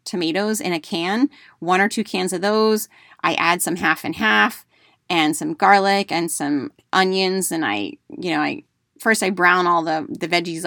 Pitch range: 160-195 Hz